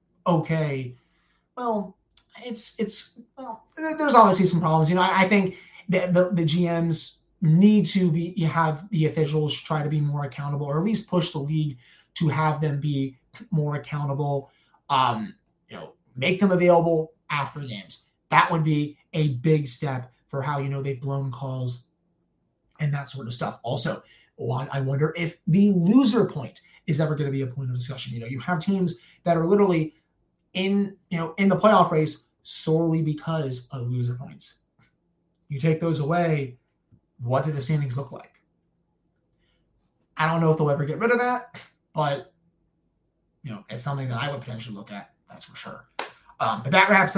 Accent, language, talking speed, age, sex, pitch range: American, English, 180 wpm, 30-49, male, 145-180 Hz